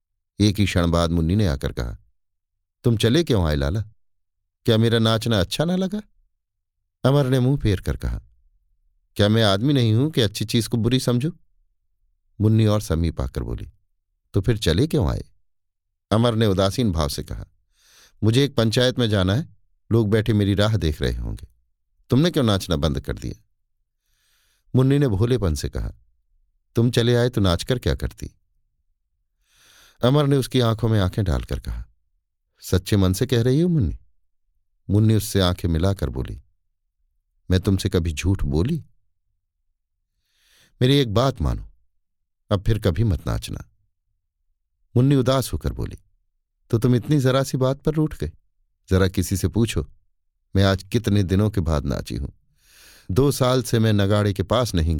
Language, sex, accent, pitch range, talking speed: Hindi, male, native, 85-115 Hz, 165 wpm